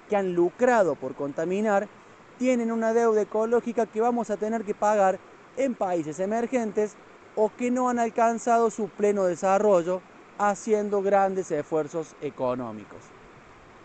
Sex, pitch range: male, 160-215 Hz